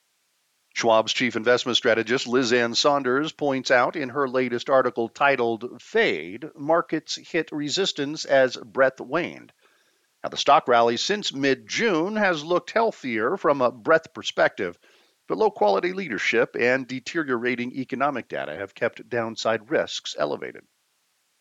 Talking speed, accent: 125 wpm, American